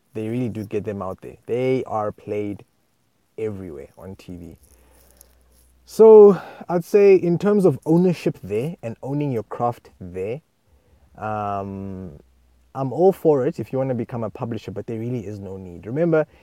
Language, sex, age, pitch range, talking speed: English, male, 20-39, 100-135 Hz, 165 wpm